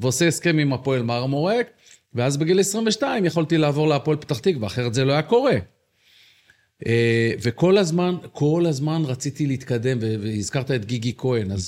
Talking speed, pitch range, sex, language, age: 150 wpm, 115-165 Hz, male, Hebrew, 40-59